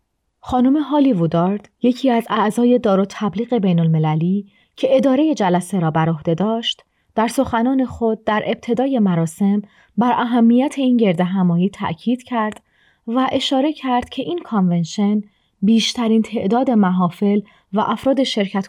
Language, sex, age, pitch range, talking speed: Persian, female, 30-49, 190-240 Hz, 135 wpm